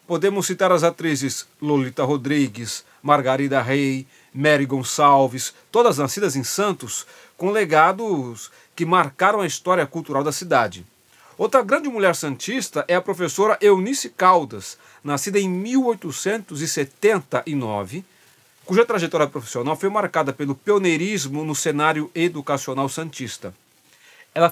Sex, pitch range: male, 140-195 Hz